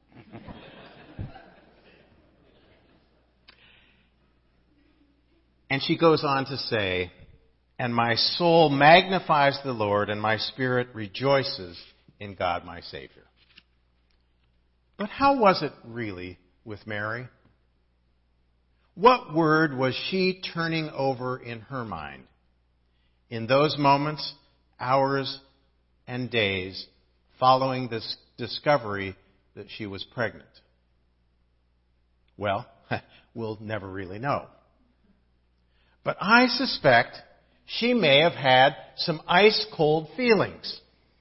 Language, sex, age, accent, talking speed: English, male, 50-69, American, 95 wpm